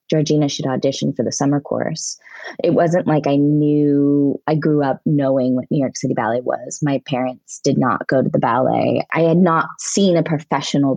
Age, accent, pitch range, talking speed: 20-39, American, 145-175 Hz, 195 wpm